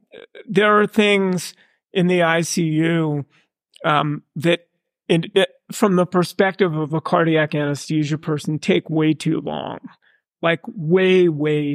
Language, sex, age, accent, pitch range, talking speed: English, male, 40-59, American, 150-180 Hz, 130 wpm